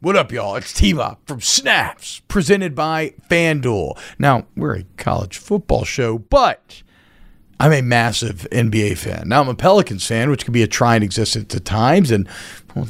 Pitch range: 120-175 Hz